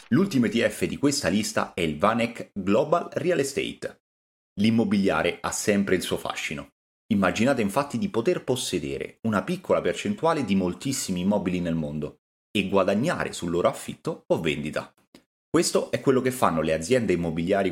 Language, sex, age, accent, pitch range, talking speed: Italian, male, 30-49, native, 85-125 Hz, 150 wpm